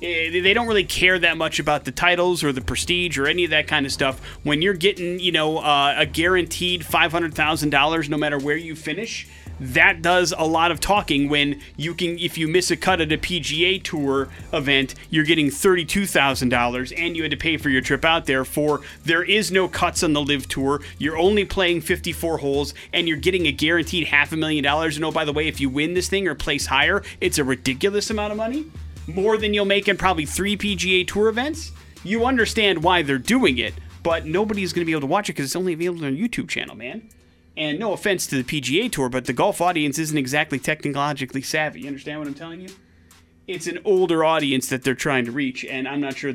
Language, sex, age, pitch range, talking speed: English, male, 30-49, 135-180 Hz, 225 wpm